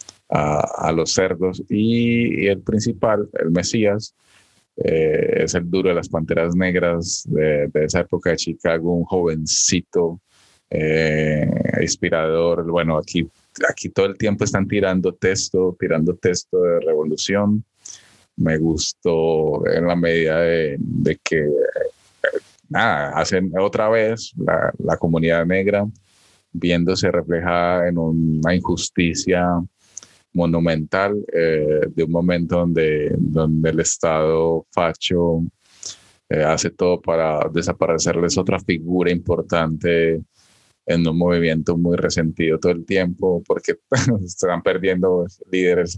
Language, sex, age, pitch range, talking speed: Spanish, male, 30-49, 80-100 Hz, 120 wpm